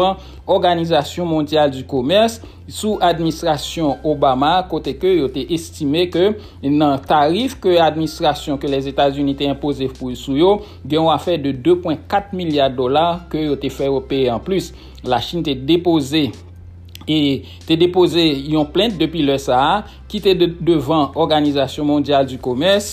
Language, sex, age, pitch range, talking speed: English, male, 60-79, 135-165 Hz, 145 wpm